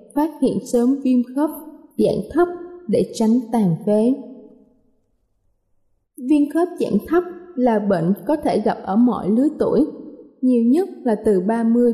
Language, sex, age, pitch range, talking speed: Vietnamese, female, 20-39, 215-270 Hz, 145 wpm